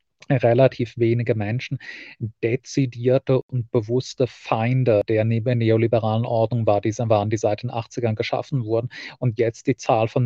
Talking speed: 140 wpm